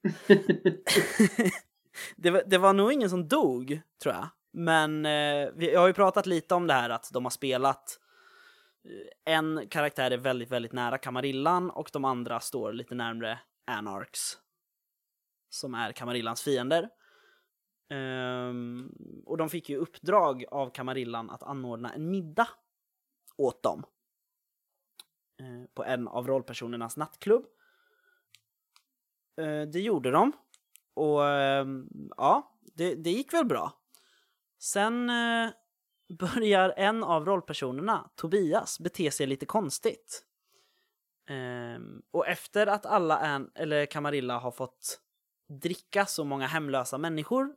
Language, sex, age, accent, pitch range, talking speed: Swedish, male, 20-39, native, 130-205 Hz, 115 wpm